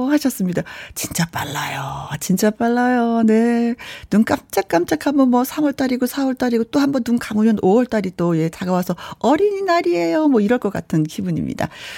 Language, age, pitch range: Korean, 40-59, 185-260 Hz